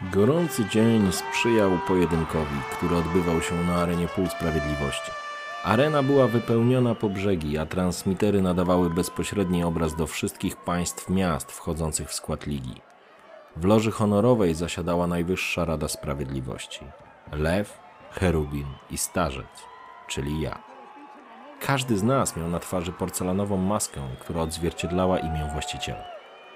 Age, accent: 30-49, native